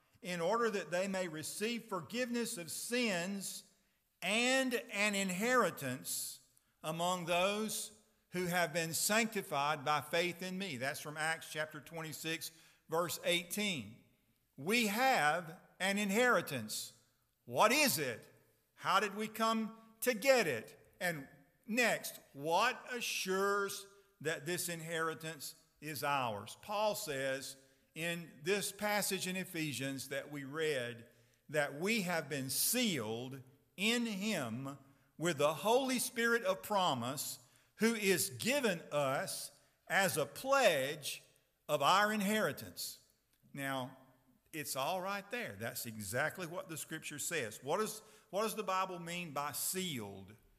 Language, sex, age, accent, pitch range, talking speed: English, male, 50-69, American, 140-210 Hz, 125 wpm